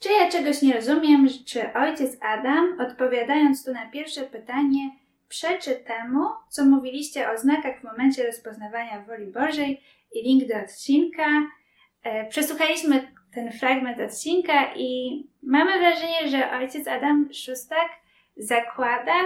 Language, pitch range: Polish, 235-285 Hz